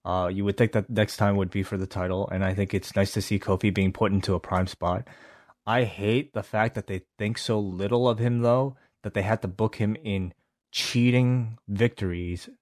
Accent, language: American, English